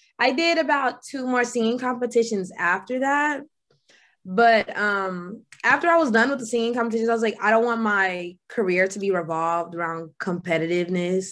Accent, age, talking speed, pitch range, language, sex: American, 20-39, 170 wpm, 185-235 Hz, English, female